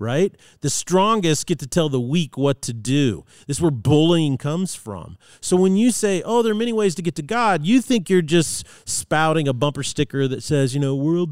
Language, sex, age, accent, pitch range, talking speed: English, male, 40-59, American, 125-175 Hz, 230 wpm